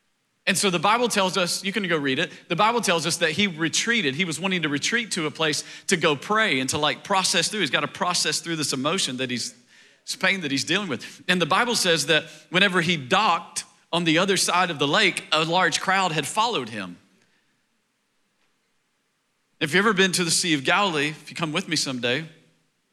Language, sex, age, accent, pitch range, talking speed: English, male, 40-59, American, 140-185 Hz, 220 wpm